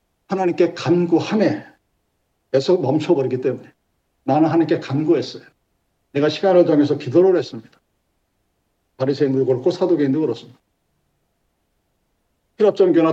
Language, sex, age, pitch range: Korean, male, 50-69, 145-200 Hz